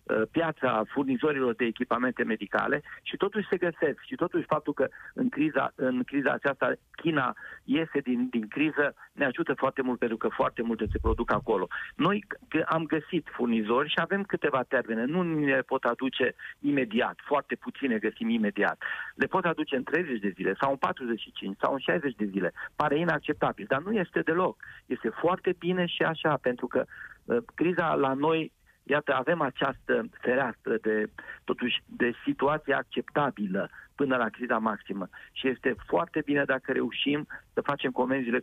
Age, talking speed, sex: 40-59, 160 wpm, male